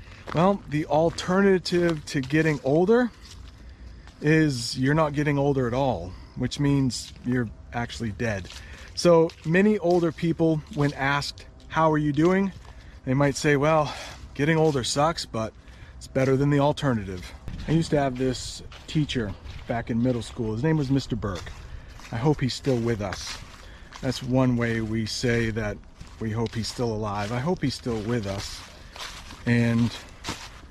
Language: English